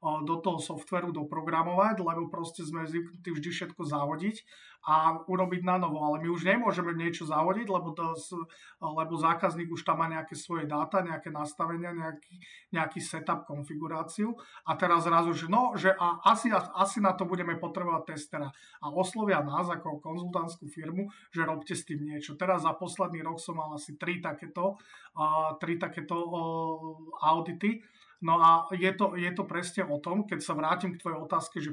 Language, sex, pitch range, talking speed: Slovak, male, 160-185 Hz, 170 wpm